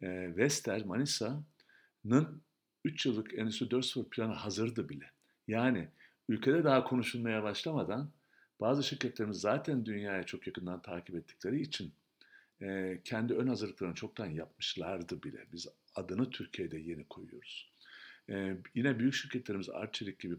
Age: 50-69